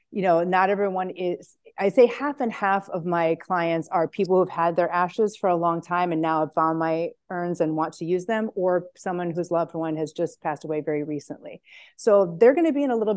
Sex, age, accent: female, 30-49, American